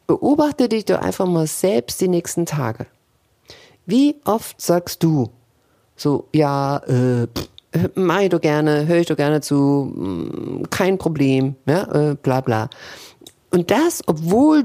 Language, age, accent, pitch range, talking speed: German, 50-69, German, 145-200 Hz, 140 wpm